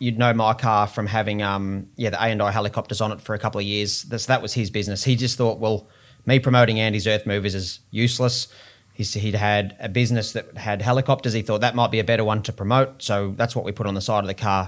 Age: 30-49